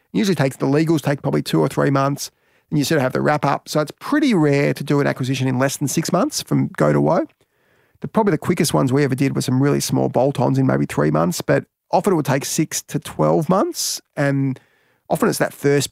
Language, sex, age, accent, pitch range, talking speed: English, male, 30-49, Australian, 130-150 Hz, 250 wpm